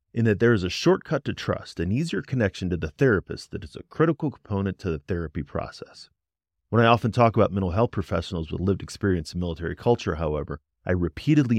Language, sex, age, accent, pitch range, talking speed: English, male, 30-49, American, 85-125 Hz, 205 wpm